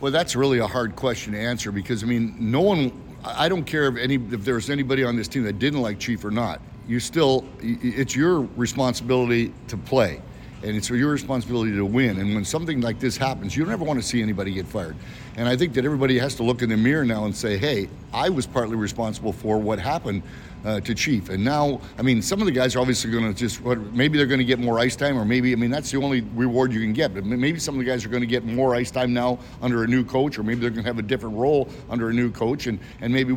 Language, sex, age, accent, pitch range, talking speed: English, male, 60-79, American, 115-130 Hz, 265 wpm